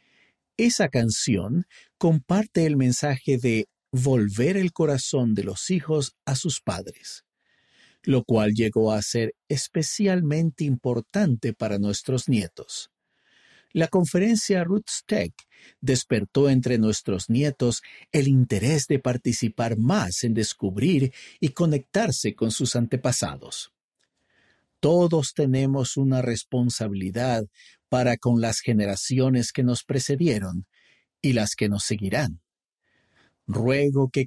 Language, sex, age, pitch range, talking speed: Spanish, male, 50-69, 110-145 Hz, 110 wpm